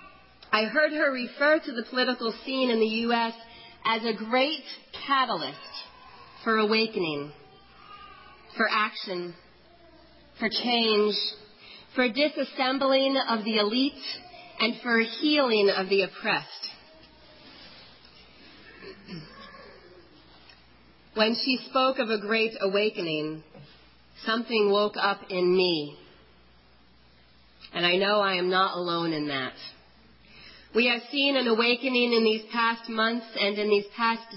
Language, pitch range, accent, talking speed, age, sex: English, 200-260 Hz, American, 115 wpm, 40-59, female